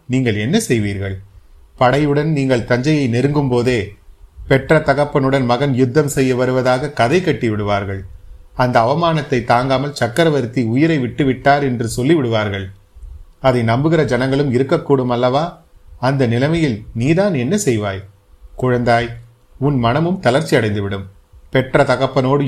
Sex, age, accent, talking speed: male, 30-49, native, 110 wpm